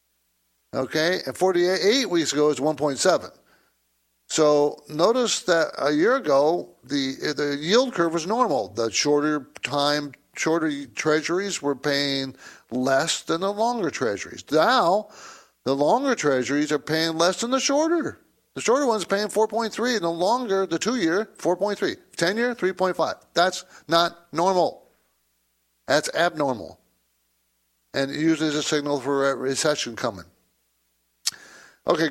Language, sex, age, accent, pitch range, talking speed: English, male, 50-69, American, 125-180 Hz, 135 wpm